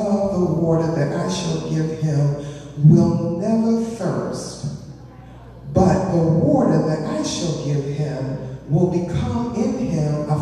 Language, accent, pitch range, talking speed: English, American, 155-205 Hz, 130 wpm